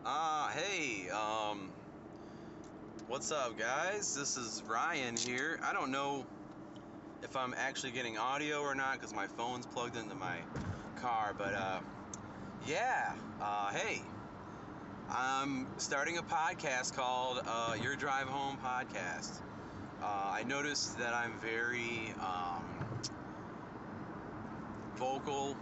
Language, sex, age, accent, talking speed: English, male, 30-49, American, 115 wpm